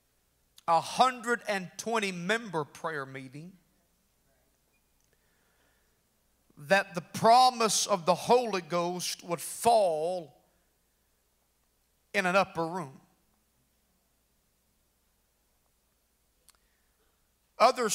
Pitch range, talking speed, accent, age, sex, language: 160-220 Hz, 60 wpm, American, 50-69, male, English